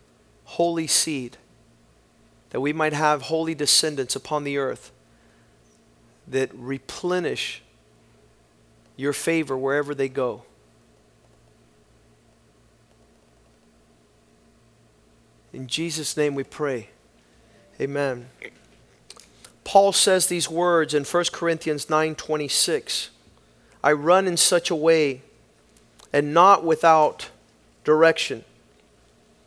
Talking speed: 85 wpm